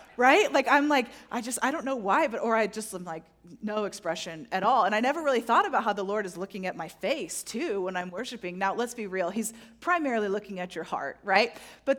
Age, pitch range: 30-49, 205-285 Hz